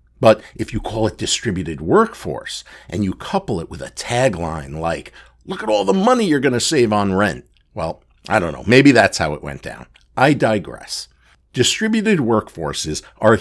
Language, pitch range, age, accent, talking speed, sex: English, 95-140 Hz, 60-79, American, 180 wpm, male